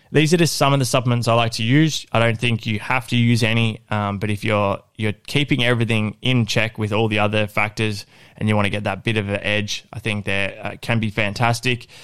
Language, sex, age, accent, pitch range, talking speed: English, male, 20-39, Australian, 105-120 Hz, 250 wpm